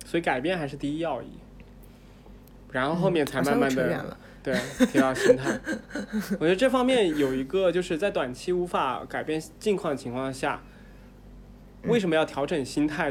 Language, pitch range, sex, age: Chinese, 130-175 Hz, male, 20-39